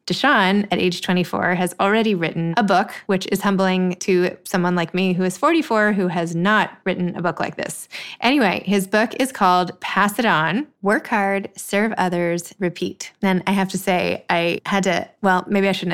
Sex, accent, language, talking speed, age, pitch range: female, American, English, 195 wpm, 20-39, 185-225 Hz